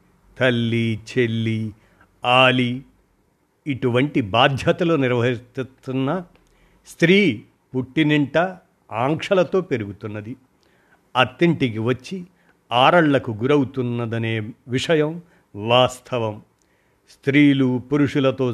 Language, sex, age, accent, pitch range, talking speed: Telugu, male, 50-69, native, 115-145 Hz, 60 wpm